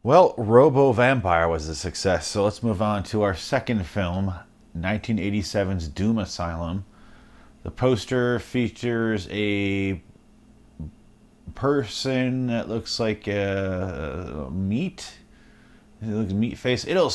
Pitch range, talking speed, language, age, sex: 100-125 Hz, 115 wpm, English, 30-49, male